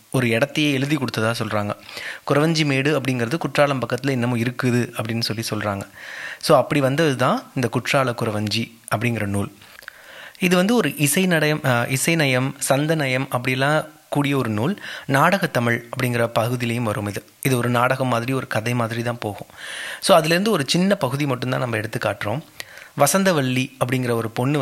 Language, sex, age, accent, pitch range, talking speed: English, male, 30-49, Indian, 120-155 Hz, 150 wpm